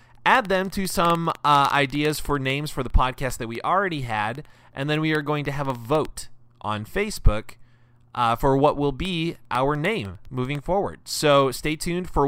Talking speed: 190 wpm